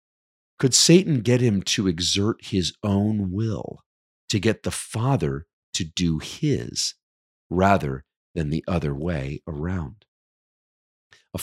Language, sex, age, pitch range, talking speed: English, male, 40-59, 80-110 Hz, 120 wpm